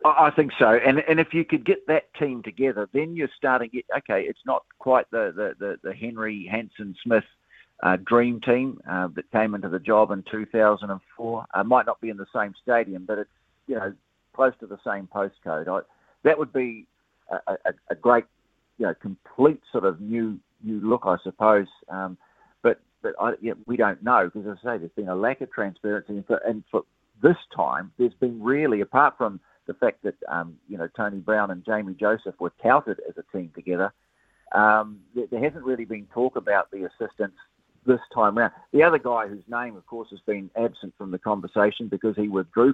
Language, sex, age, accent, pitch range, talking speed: English, male, 50-69, Australian, 100-120 Hz, 210 wpm